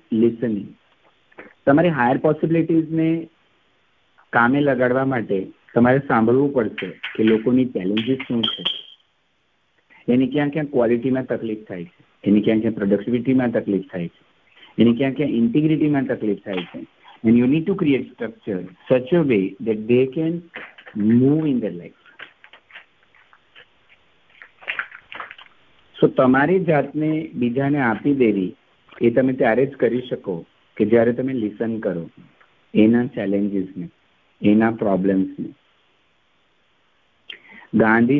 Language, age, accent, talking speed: English, 50-69, Indian, 90 wpm